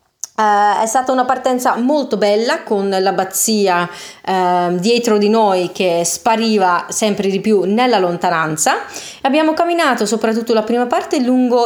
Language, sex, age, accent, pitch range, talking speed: Italian, female, 30-49, native, 185-240 Hz, 140 wpm